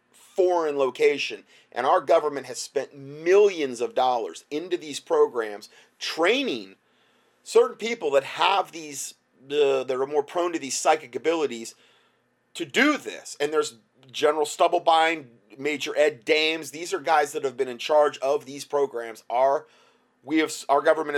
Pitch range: 120-165 Hz